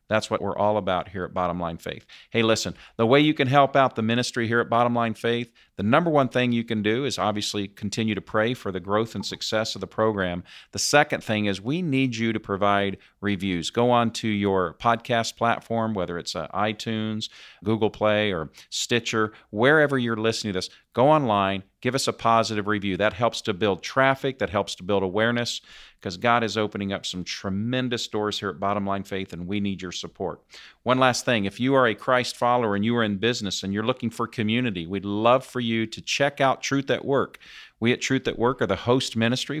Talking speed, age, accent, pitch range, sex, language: 220 wpm, 50-69, American, 100-120 Hz, male, English